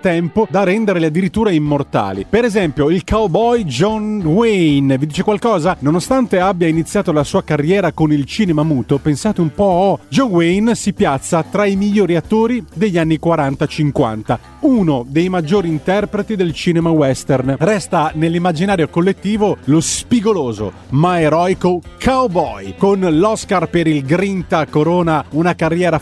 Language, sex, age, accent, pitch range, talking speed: Italian, male, 30-49, native, 150-190 Hz, 145 wpm